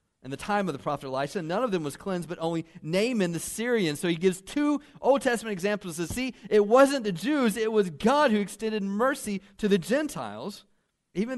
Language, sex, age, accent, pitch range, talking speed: English, male, 40-59, American, 130-210 Hz, 210 wpm